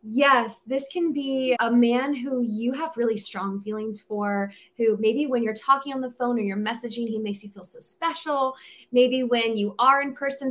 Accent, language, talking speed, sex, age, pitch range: American, English, 205 wpm, female, 20-39, 215-260 Hz